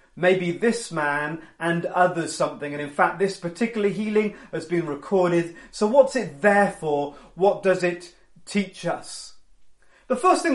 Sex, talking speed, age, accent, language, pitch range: male, 160 wpm, 30-49, British, English, 170-220 Hz